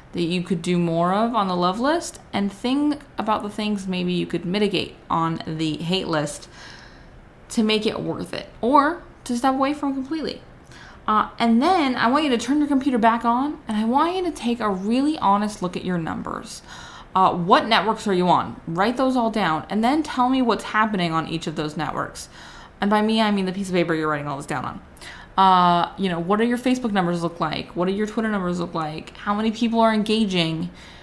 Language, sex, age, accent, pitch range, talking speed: English, female, 20-39, American, 175-230 Hz, 225 wpm